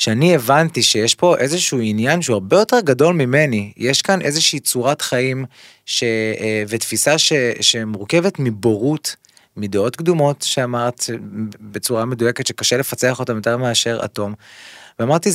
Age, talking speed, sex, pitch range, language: 20-39, 130 wpm, male, 115-155 Hz, Hebrew